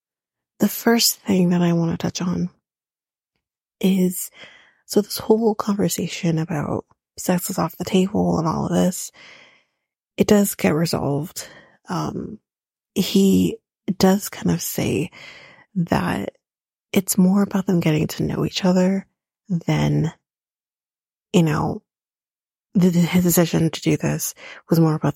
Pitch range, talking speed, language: 170-200 Hz, 130 wpm, English